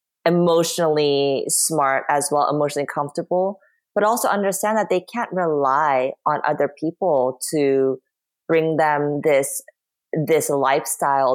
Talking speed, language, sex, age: 115 wpm, English, female, 20-39